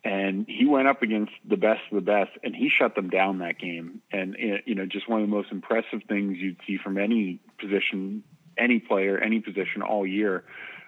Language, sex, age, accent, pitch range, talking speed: English, male, 30-49, American, 100-120 Hz, 210 wpm